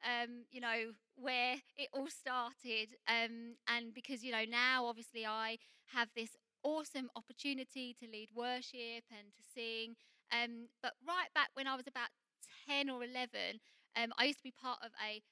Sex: female